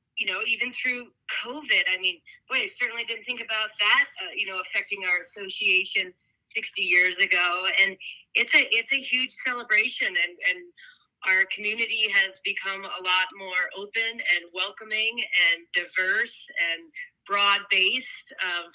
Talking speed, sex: 155 wpm, female